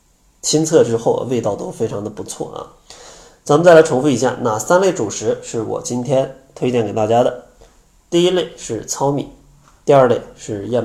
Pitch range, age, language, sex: 110-135 Hz, 20-39, Chinese, male